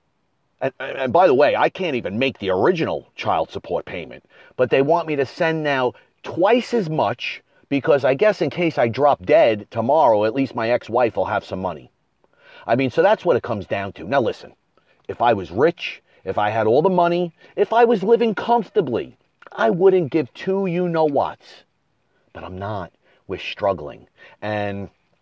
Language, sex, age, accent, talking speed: English, male, 30-49, American, 210 wpm